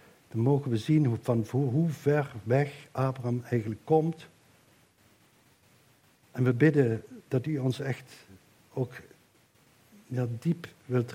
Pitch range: 120-145 Hz